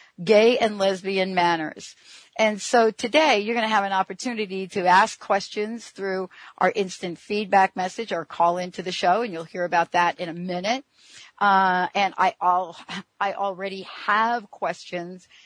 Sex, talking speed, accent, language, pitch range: female, 165 wpm, American, English, 170-205 Hz